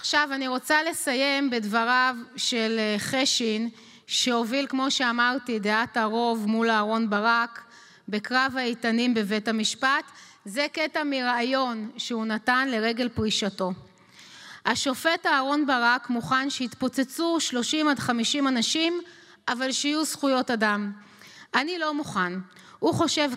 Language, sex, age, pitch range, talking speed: Hebrew, female, 20-39, 225-280 Hz, 115 wpm